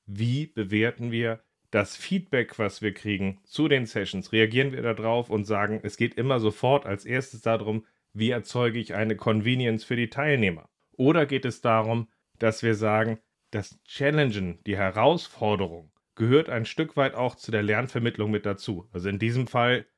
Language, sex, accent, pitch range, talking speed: German, male, German, 105-125 Hz, 170 wpm